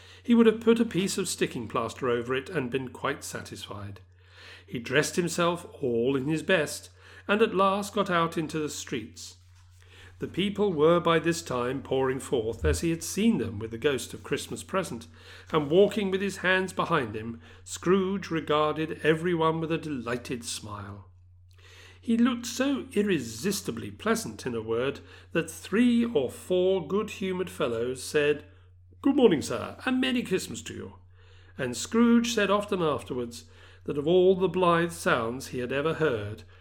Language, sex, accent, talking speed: English, male, British, 165 wpm